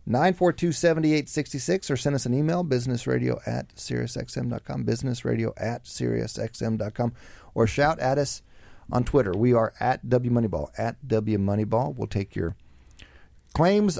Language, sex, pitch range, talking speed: English, male, 100-135 Hz, 115 wpm